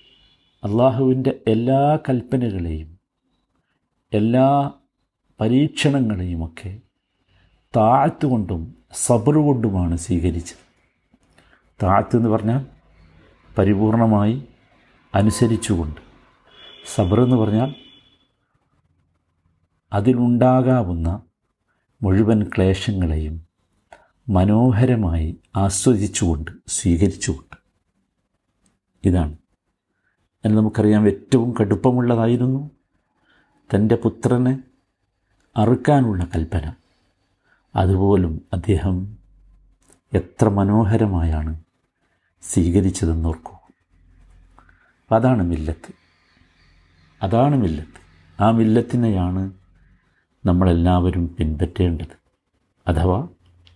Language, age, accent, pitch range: Malayalam, 50-69, native, 85-115 Hz